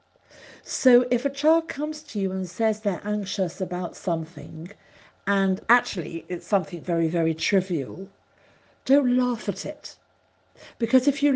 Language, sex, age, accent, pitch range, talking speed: English, female, 50-69, British, 170-230 Hz, 145 wpm